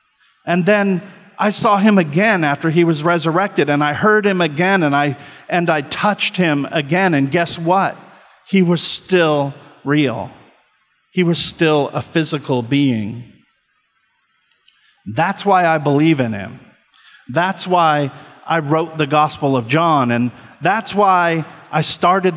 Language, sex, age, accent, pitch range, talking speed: English, male, 50-69, American, 135-180 Hz, 145 wpm